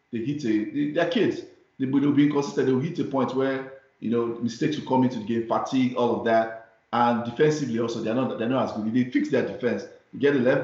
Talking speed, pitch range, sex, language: 250 wpm, 115-145 Hz, male, English